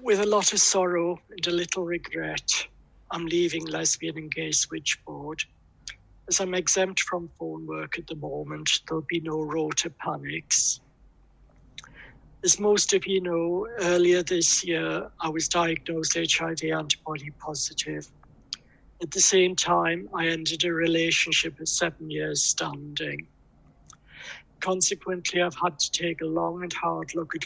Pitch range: 155-175 Hz